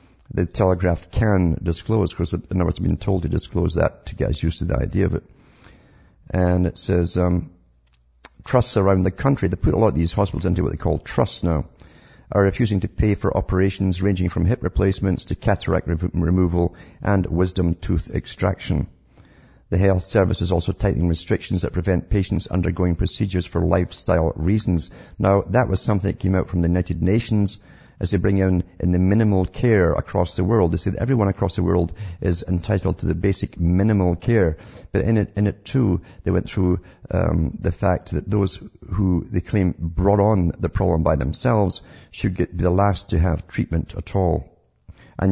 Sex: male